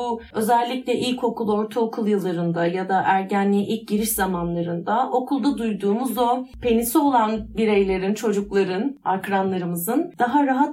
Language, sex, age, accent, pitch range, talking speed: Turkish, female, 30-49, native, 205-270 Hz, 110 wpm